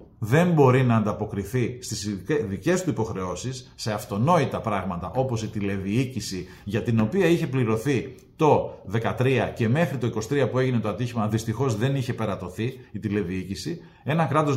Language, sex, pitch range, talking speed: Greek, male, 110-135 Hz, 150 wpm